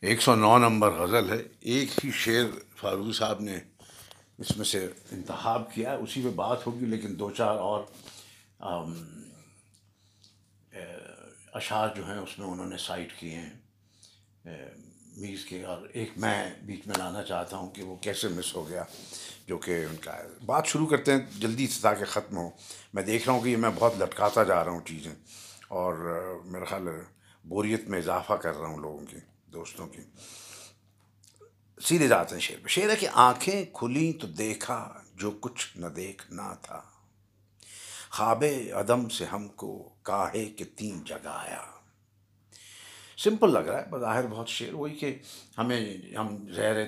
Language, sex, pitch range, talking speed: Urdu, male, 90-115 Hz, 170 wpm